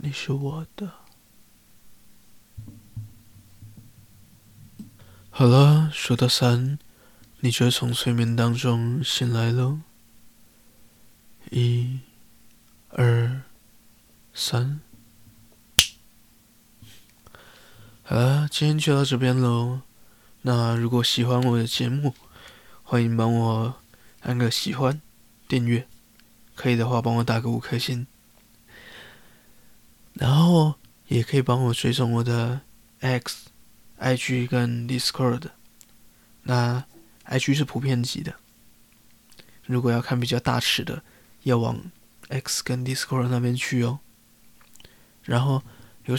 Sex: male